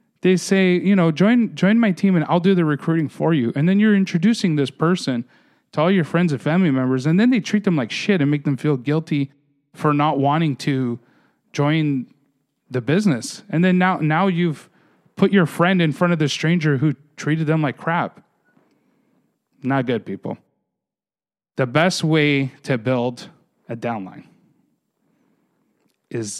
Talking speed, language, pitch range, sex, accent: 175 wpm, English, 130-175 Hz, male, American